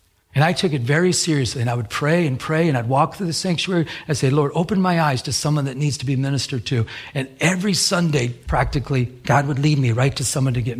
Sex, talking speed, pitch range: male, 250 wpm, 125-185 Hz